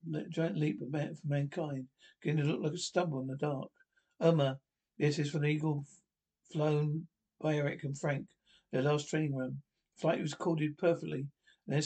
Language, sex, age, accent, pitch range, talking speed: English, male, 60-79, British, 150-175 Hz, 175 wpm